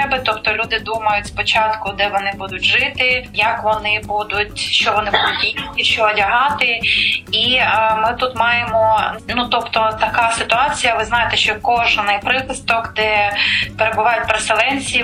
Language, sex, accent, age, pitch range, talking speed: Ukrainian, female, native, 20-39, 215-240 Hz, 135 wpm